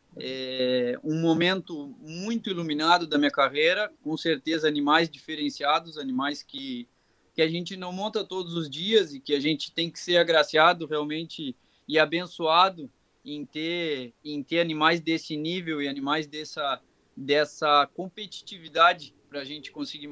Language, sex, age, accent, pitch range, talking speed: Portuguese, male, 20-39, Brazilian, 145-170 Hz, 145 wpm